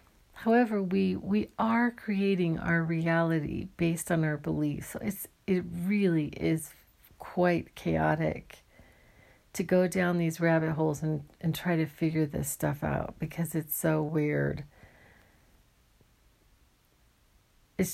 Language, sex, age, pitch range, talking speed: English, female, 50-69, 155-195 Hz, 115 wpm